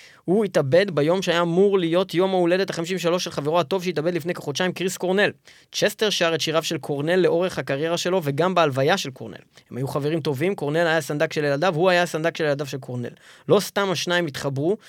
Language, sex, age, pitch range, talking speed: Hebrew, male, 20-39, 130-180 Hz, 200 wpm